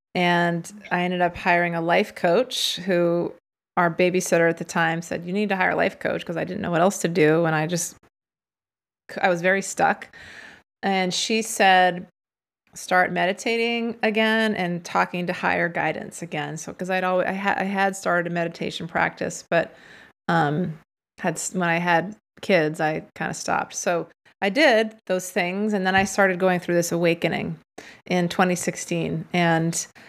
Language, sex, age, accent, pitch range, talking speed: English, female, 30-49, American, 175-200 Hz, 175 wpm